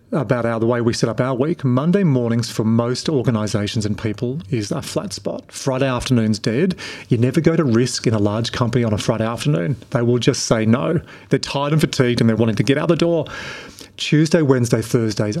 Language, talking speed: English, 220 wpm